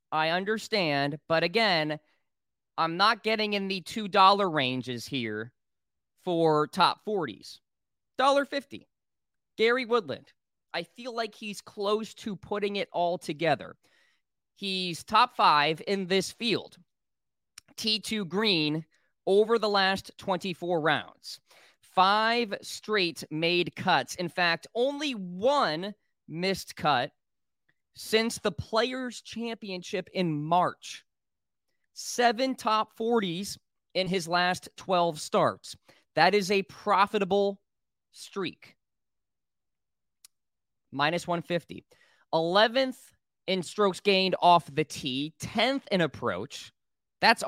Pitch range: 165-220 Hz